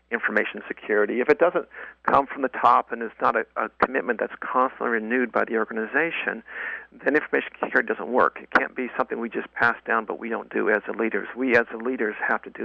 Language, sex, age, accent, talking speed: English, male, 50-69, American, 230 wpm